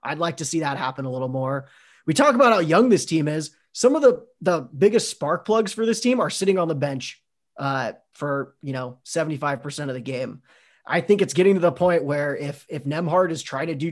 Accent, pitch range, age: American, 140-185 Hz, 20-39